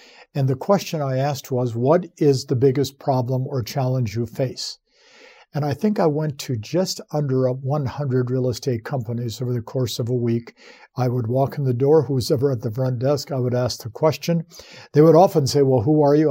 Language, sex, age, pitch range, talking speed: English, male, 50-69, 125-150 Hz, 215 wpm